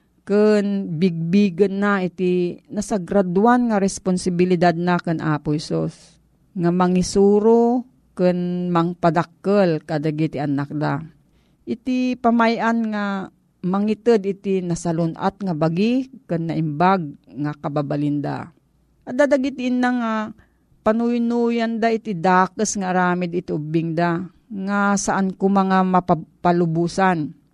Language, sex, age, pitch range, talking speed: Filipino, female, 40-59, 175-230 Hz, 100 wpm